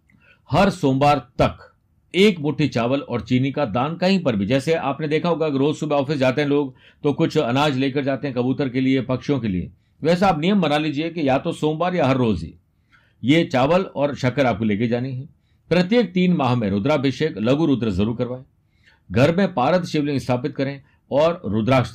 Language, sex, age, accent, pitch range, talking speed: Hindi, male, 50-69, native, 110-150 Hz, 200 wpm